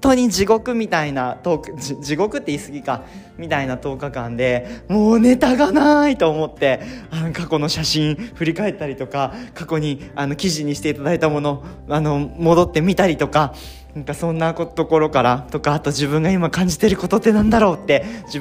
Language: Japanese